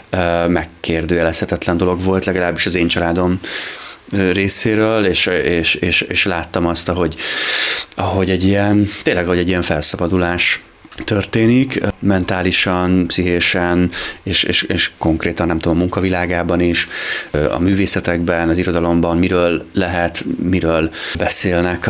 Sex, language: male, Hungarian